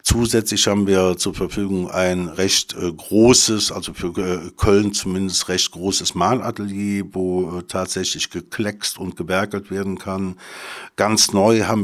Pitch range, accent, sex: 90-105 Hz, German, male